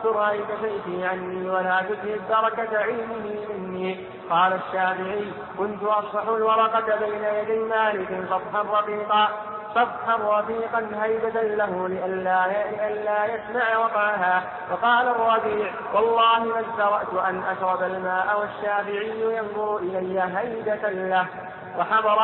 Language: Arabic